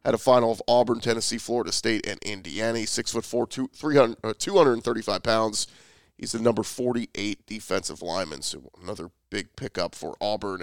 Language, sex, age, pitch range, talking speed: English, male, 30-49, 110-130 Hz, 160 wpm